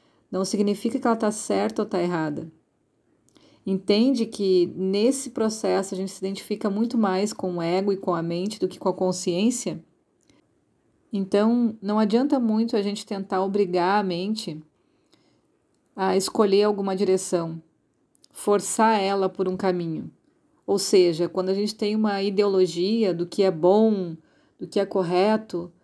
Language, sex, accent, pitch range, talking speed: Portuguese, female, Brazilian, 185-225 Hz, 155 wpm